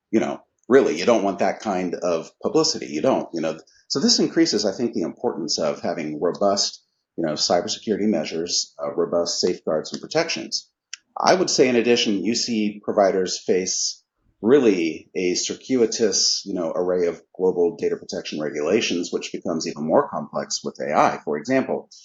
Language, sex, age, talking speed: English, male, 40-59, 170 wpm